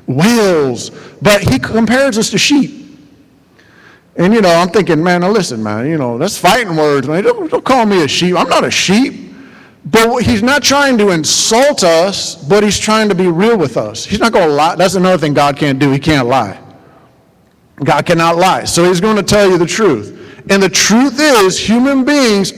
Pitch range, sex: 170-225 Hz, male